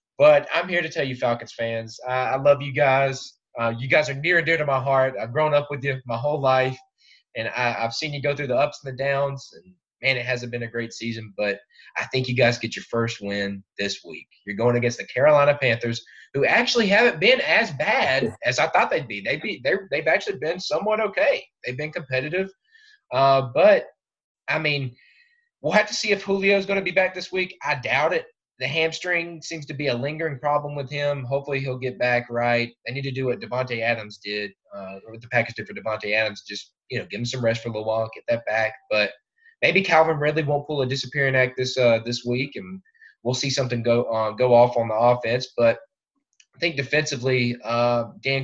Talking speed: 230 wpm